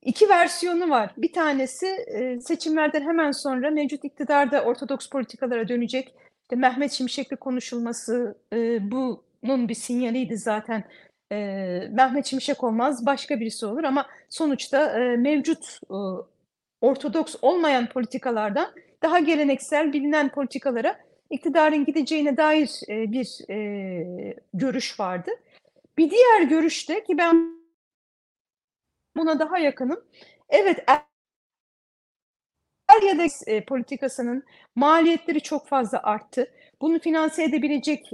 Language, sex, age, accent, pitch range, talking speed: Turkish, female, 40-59, native, 250-315 Hz, 105 wpm